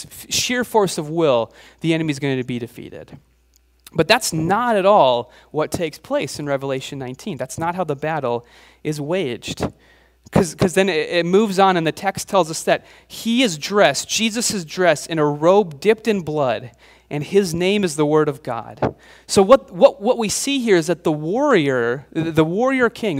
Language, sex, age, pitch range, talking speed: English, male, 30-49, 150-200 Hz, 195 wpm